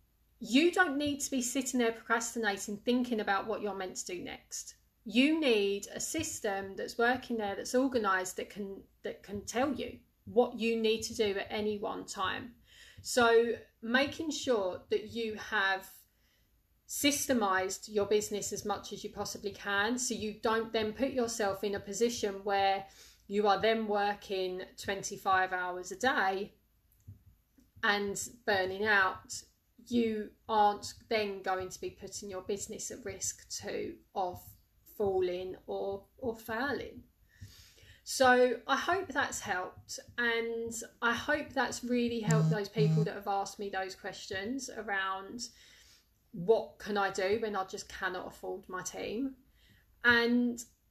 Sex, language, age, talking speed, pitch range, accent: female, English, 30-49, 145 wpm, 195-240 Hz, British